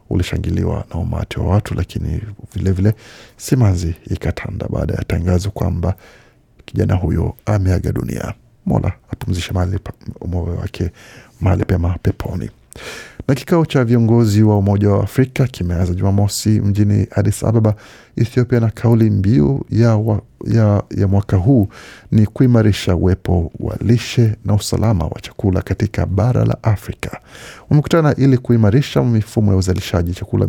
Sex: male